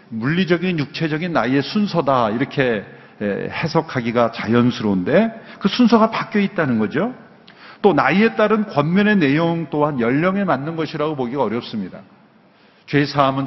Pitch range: 130-175 Hz